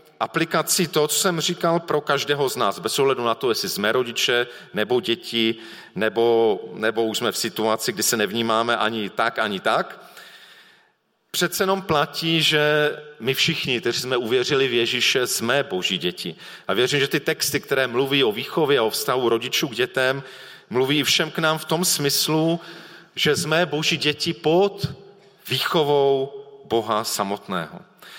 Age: 40-59